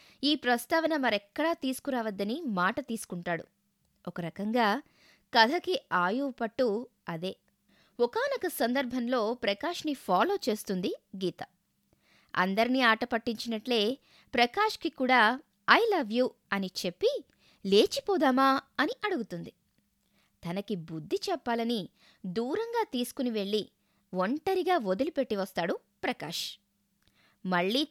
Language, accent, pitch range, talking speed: Telugu, native, 200-295 Hz, 85 wpm